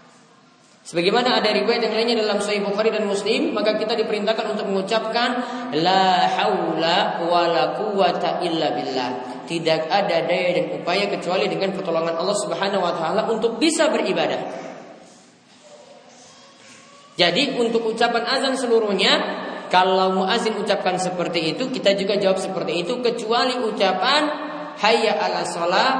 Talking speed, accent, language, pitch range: 130 wpm, Indonesian, Romanian, 180-230 Hz